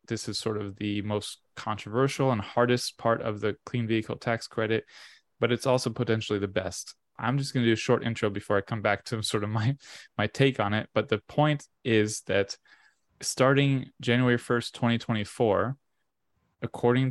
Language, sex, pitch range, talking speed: English, male, 105-120 Hz, 180 wpm